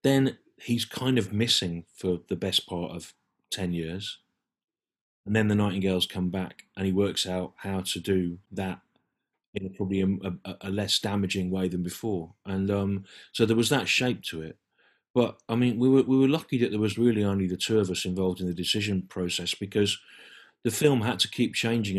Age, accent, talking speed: 30-49, British, 195 wpm